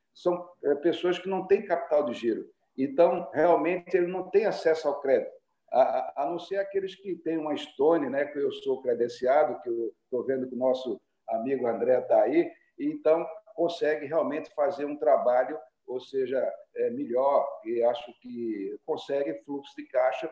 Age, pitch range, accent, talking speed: 50-69, 135-225 Hz, Brazilian, 175 wpm